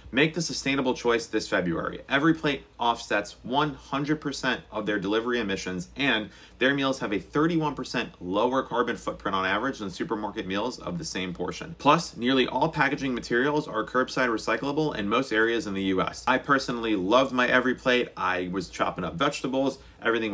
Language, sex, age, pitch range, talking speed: English, male, 30-49, 100-135 Hz, 175 wpm